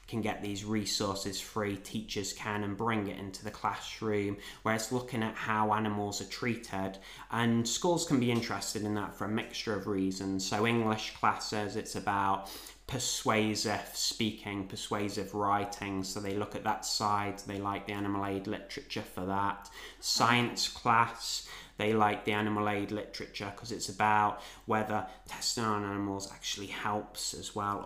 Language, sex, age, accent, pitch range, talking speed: English, male, 20-39, British, 100-110 Hz, 160 wpm